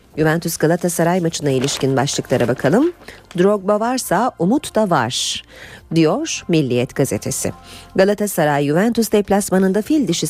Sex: female